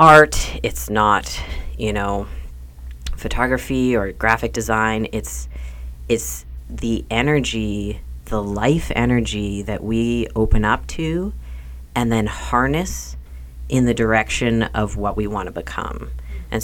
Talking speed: 120 wpm